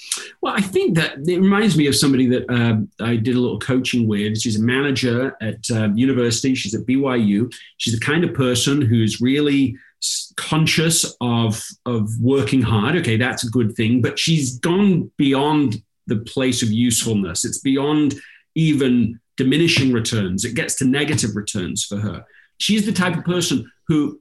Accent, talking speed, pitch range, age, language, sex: British, 170 wpm, 120-160 Hz, 40-59, English, male